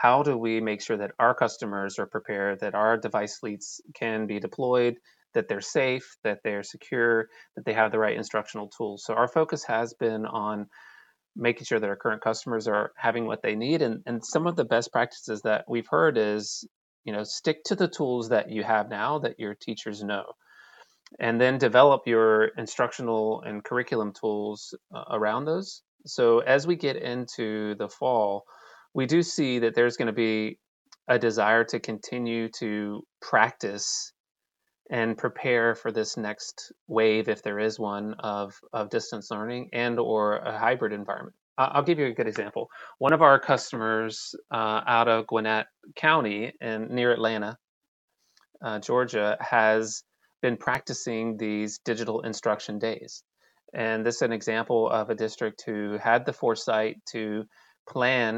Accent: American